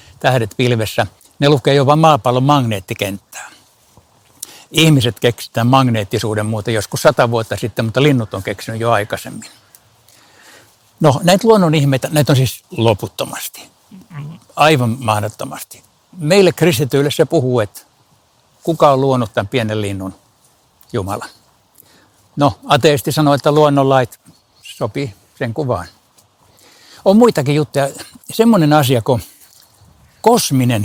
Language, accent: Finnish, native